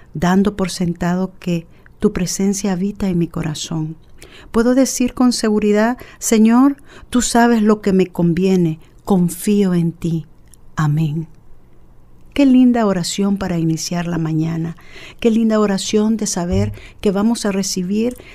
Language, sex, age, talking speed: Spanish, female, 50-69, 135 wpm